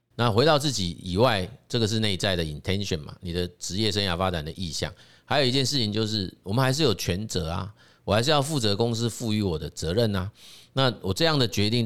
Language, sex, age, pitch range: Chinese, male, 30-49, 90-115 Hz